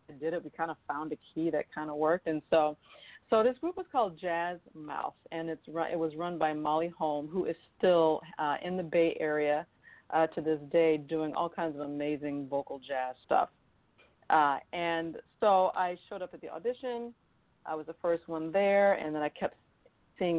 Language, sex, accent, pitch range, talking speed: English, female, American, 155-185 Hz, 205 wpm